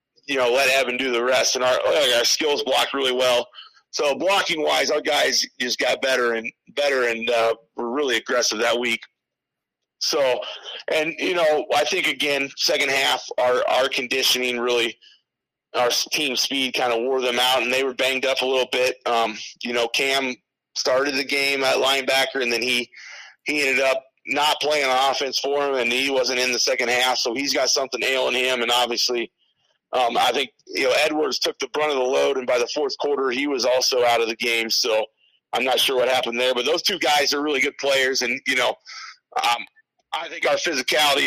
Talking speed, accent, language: 210 wpm, American, English